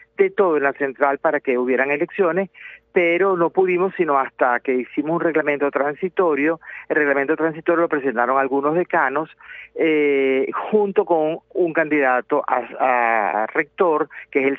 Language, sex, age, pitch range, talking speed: Spanish, male, 40-59, 130-170 Hz, 150 wpm